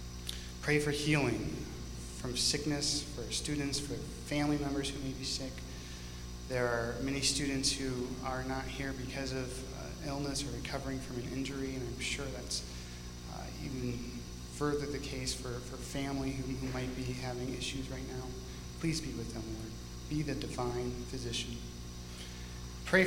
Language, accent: English, American